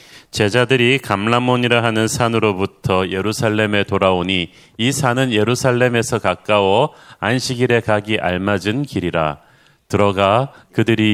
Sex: male